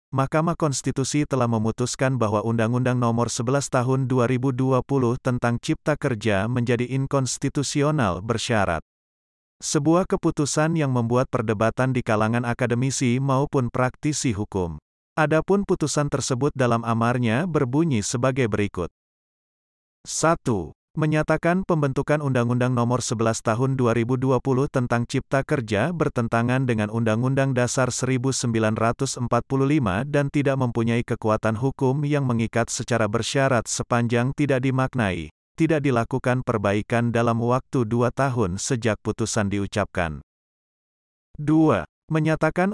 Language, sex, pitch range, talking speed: Indonesian, male, 115-135 Hz, 105 wpm